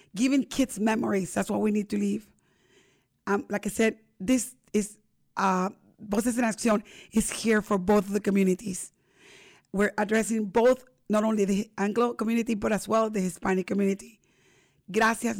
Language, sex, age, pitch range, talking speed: English, female, 30-49, 205-230 Hz, 160 wpm